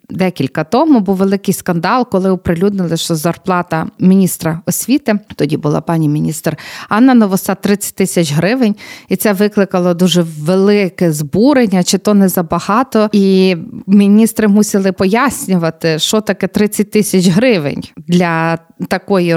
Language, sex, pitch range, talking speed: Ukrainian, female, 170-215 Hz, 125 wpm